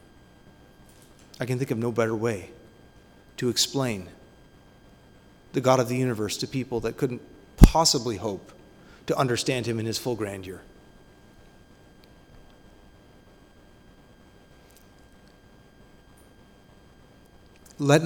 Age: 30-49